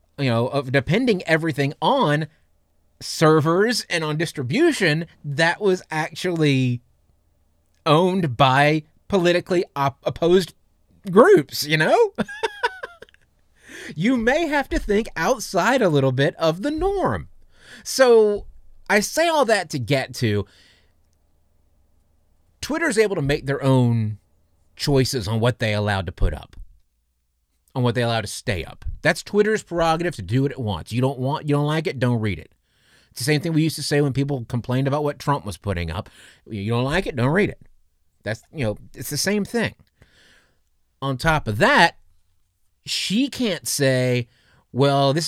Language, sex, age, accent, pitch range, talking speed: English, male, 30-49, American, 105-170 Hz, 160 wpm